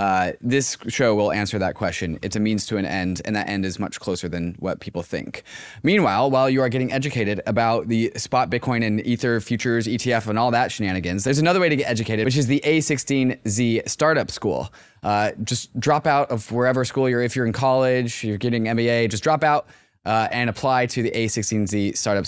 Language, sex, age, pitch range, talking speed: English, male, 20-39, 100-130 Hz, 210 wpm